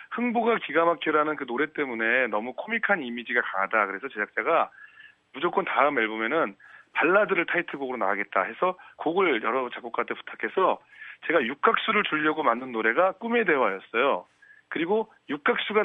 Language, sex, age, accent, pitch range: Korean, male, 40-59, native, 130-200 Hz